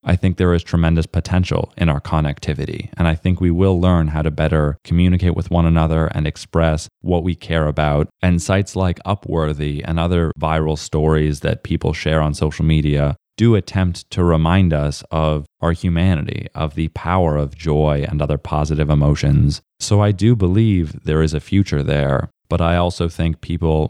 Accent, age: American, 20-39